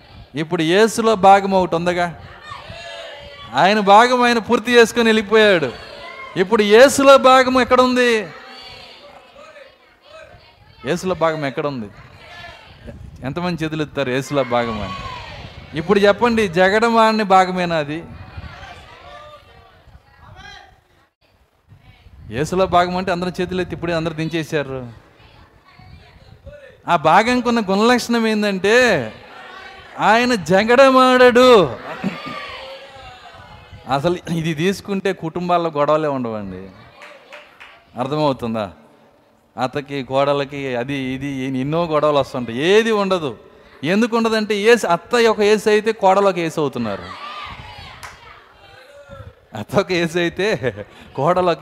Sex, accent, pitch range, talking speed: male, native, 135-215 Hz, 85 wpm